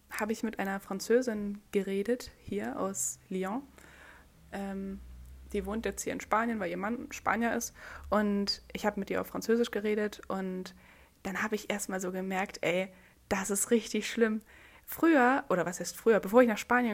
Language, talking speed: German, 175 wpm